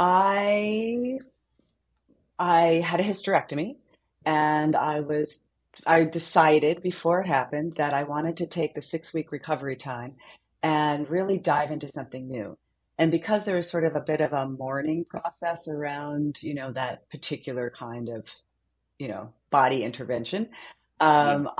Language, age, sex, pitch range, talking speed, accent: English, 40-59, female, 140-170 Hz, 145 wpm, American